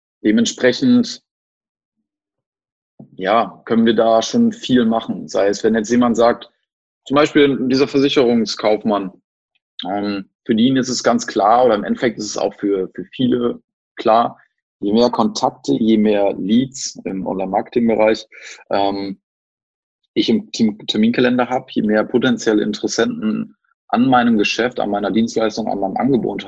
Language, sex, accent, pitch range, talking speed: German, male, German, 105-130 Hz, 140 wpm